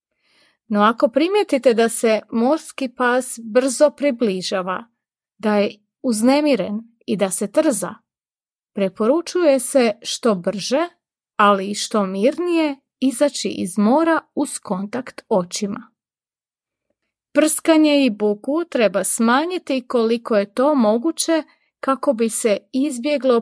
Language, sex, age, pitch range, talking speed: Croatian, female, 30-49, 210-285 Hz, 110 wpm